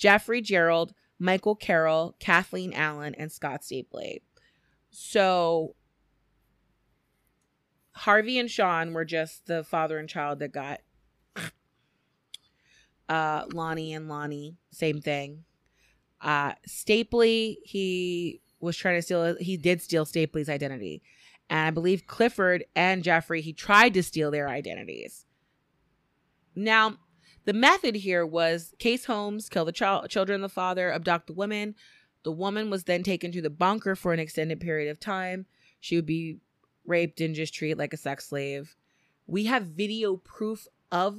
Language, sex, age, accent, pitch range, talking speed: English, female, 30-49, American, 155-195 Hz, 140 wpm